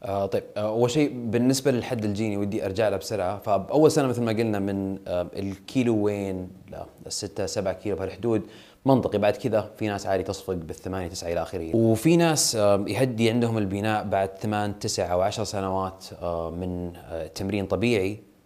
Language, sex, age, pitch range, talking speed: Arabic, male, 30-49, 95-115 Hz, 155 wpm